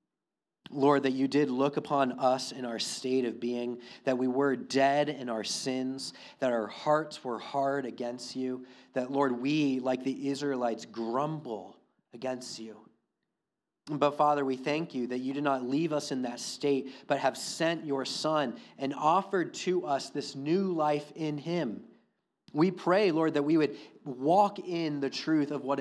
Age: 30-49